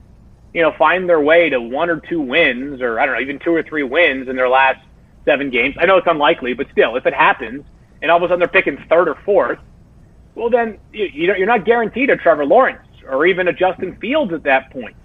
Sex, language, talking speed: male, English, 235 wpm